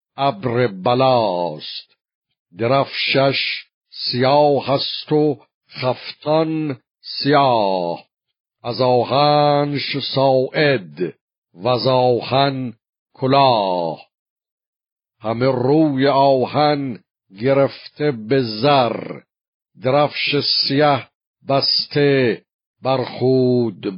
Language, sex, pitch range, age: Persian, male, 115-135 Hz, 50-69